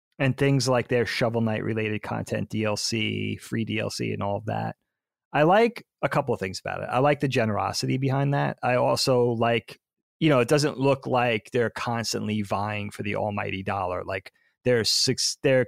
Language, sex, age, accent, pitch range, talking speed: English, male, 30-49, American, 110-150 Hz, 190 wpm